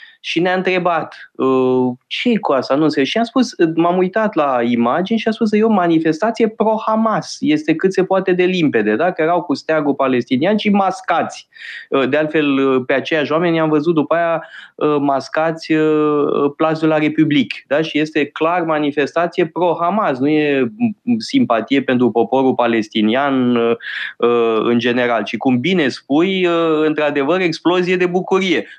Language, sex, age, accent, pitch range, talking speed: Romanian, male, 20-39, native, 125-185 Hz, 150 wpm